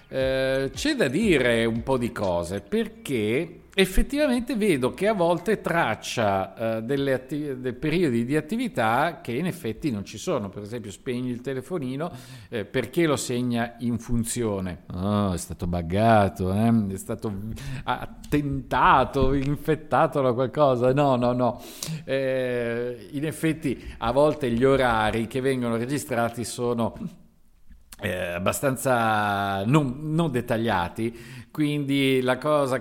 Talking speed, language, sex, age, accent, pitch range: 125 wpm, Italian, male, 50-69, native, 110-140 Hz